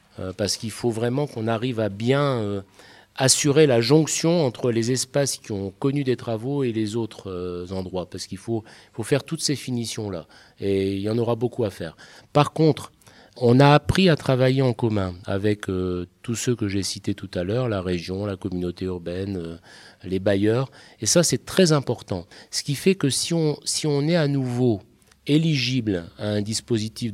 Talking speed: 180 wpm